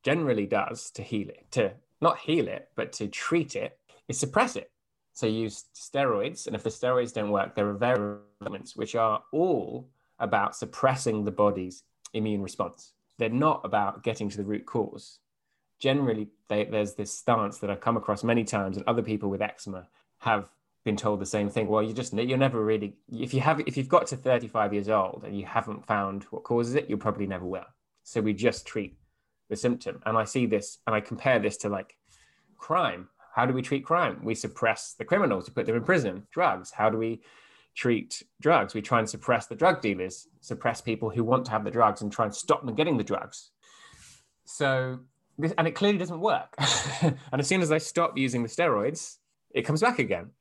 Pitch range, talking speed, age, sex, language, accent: 105-135 Hz, 210 wpm, 20-39, male, English, British